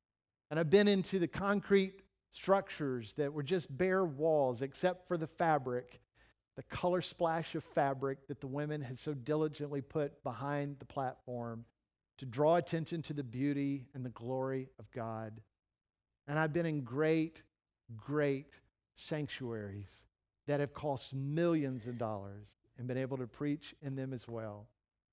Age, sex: 50-69, male